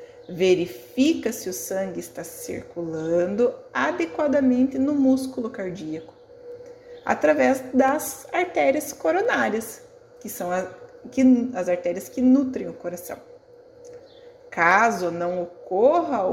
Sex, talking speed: female, 90 wpm